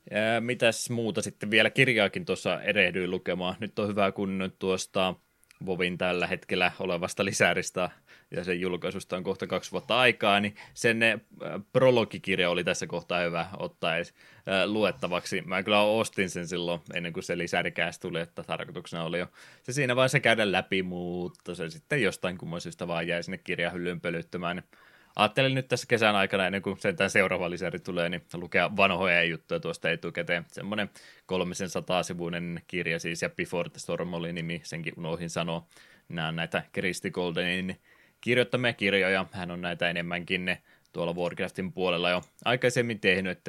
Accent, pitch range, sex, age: native, 85-105 Hz, male, 20-39